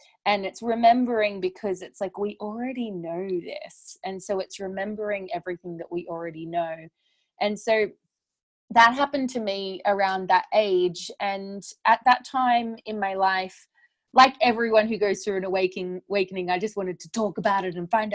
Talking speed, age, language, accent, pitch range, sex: 170 wpm, 20-39, English, Australian, 180-220 Hz, female